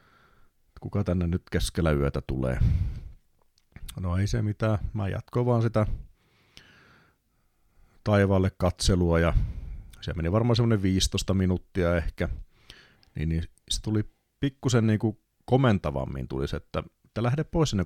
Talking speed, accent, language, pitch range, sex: 120 wpm, native, Finnish, 80-110 Hz, male